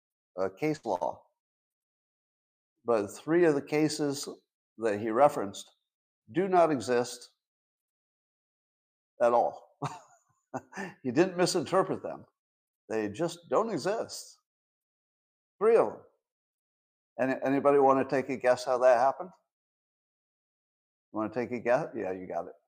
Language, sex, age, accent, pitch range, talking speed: English, male, 50-69, American, 110-155 Hz, 115 wpm